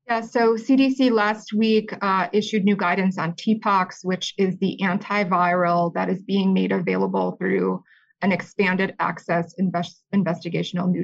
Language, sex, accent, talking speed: English, female, American, 140 wpm